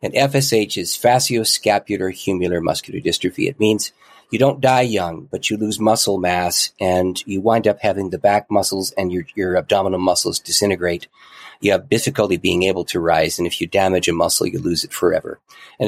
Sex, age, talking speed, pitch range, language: male, 40-59, 185 wpm, 95-120 Hz, English